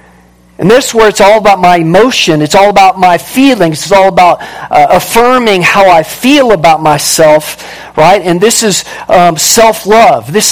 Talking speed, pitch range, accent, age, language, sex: 175 wpm, 155-205 Hz, American, 50-69, English, male